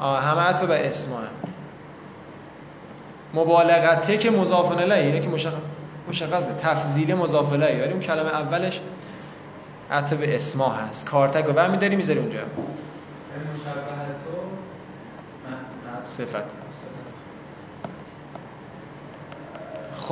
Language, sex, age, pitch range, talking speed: Persian, male, 20-39, 155-195 Hz, 85 wpm